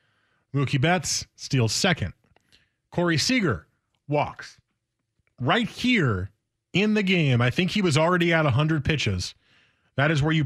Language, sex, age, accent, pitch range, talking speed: English, male, 30-49, American, 110-155 Hz, 140 wpm